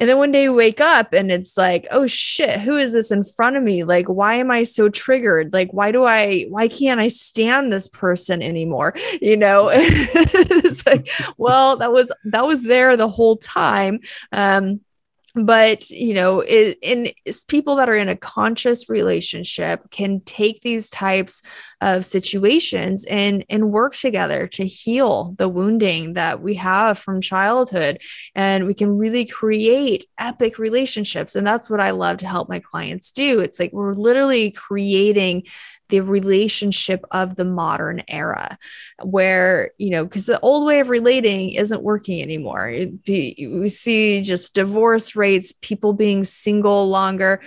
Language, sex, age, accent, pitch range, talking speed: English, female, 20-39, American, 190-240 Hz, 165 wpm